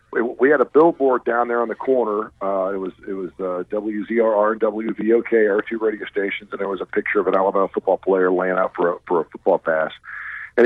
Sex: male